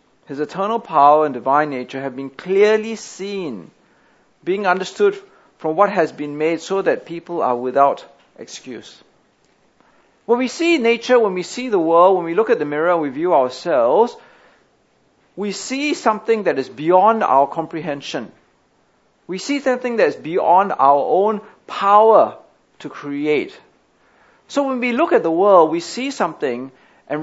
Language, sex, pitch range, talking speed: English, male, 160-260 Hz, 160 wpm